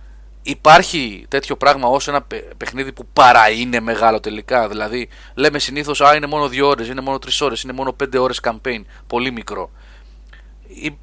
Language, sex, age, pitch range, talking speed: Greek, male, 30-49, 105-150 Hz, 170 wpm